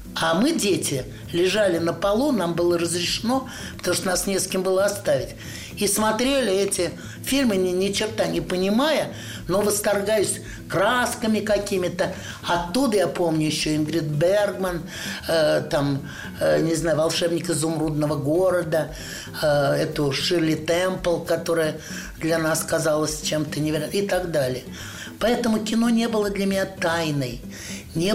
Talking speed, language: 140 wpm, Russian